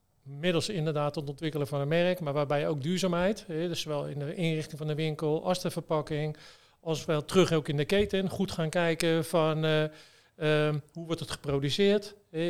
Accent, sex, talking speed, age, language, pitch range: Dutch, male, 180 wpm, 40-59, Dutch, 150-175 Hz